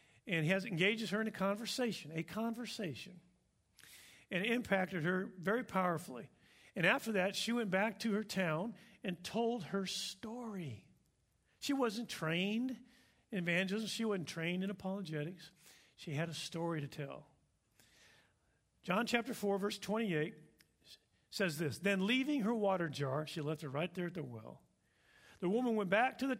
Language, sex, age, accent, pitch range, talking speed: English, male, 50-69, American, 175-225 Hz, 160 wpm